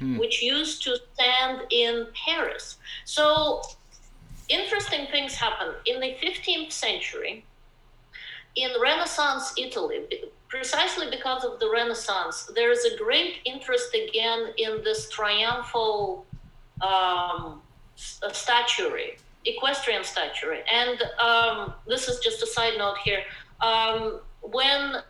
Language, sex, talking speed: English, female, 110 wpm